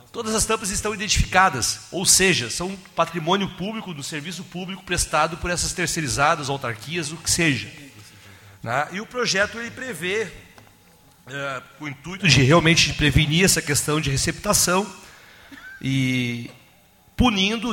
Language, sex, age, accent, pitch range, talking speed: Portuguese, male, 40-59, Brazilian, 130-180 Hz, 120 wpm